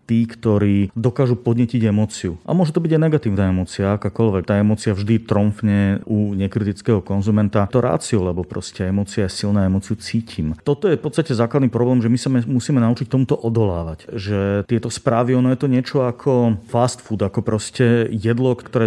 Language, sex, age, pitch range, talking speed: Slovak, male, 40-59, 105-120 Hz, 180 wpm